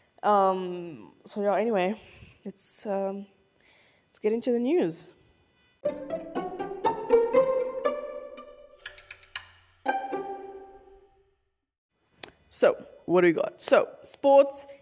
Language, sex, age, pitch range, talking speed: English, female, 10-29, 180-275 Hz, 75 wpm